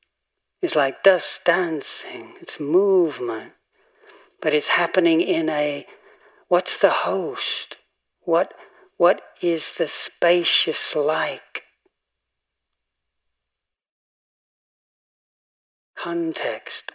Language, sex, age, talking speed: English, male, 60-79, 75 wpm